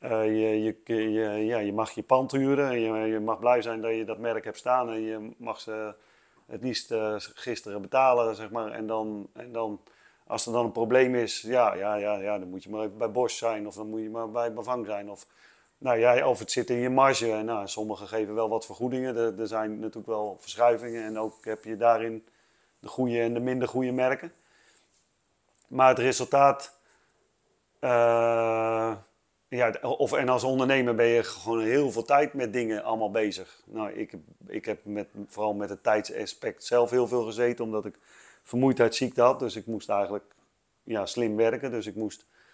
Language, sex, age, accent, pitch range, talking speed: Dutch, male, 30-49, Dutch, 105-120 Hz, 200 wpm